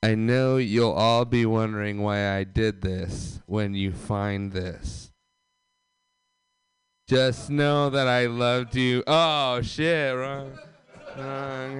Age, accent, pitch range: 20-39, American, 130-200 Hz